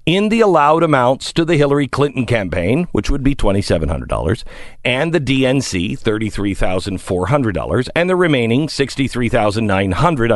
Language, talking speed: English, 120 wpm